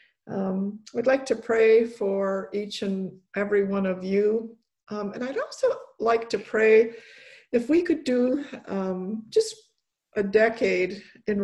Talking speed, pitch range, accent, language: 145 wpm, 190-220 Hz, American, English